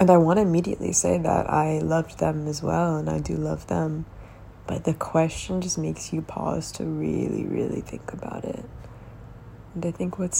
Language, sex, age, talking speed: English, female, 20-39, 190 wpm